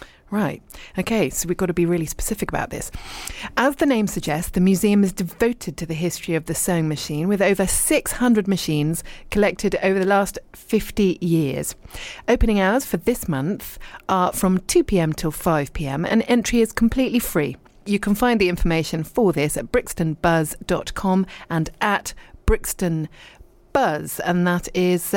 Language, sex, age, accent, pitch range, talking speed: English, female, 40-59, British, 160-210 Hz, 160 wpm